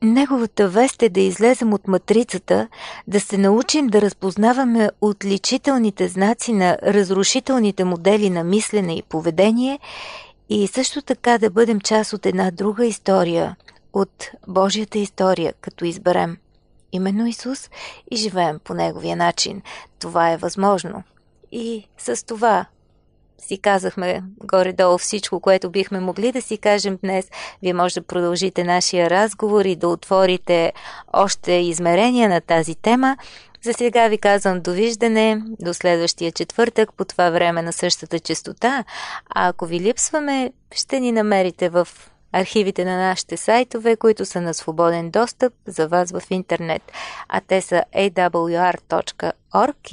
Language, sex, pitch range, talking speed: Bulgarian, female, 180-225 Hz, 135 wpm